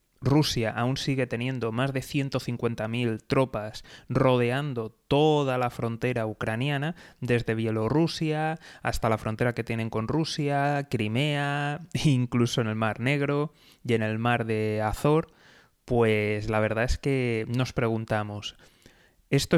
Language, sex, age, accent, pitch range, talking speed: Spanish, male, 20-39, Spanish, 110-140 Hz, 130 wpm